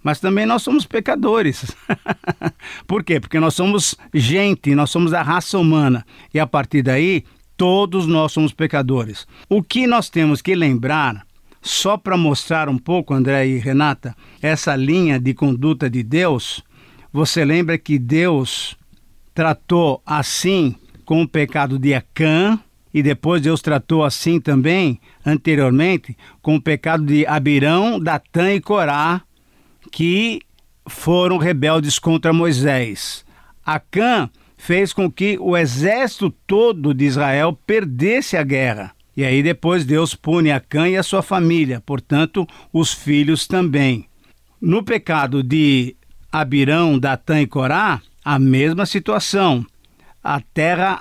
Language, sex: Portuguese, male